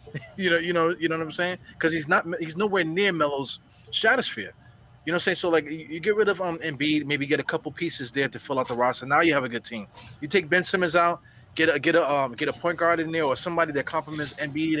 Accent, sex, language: American, male, English